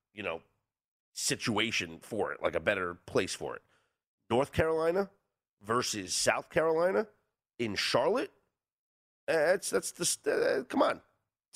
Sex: male